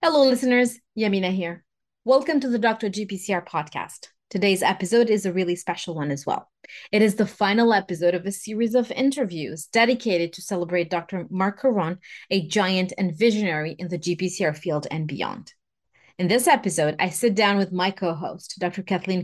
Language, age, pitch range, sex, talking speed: English, 30-49, 175-230 Hz, female, 175 wpm